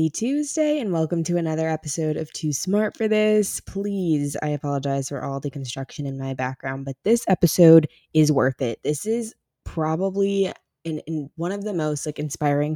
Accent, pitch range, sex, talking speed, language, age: American, 145-170 Hz, female, 180 wpm, English, 20-39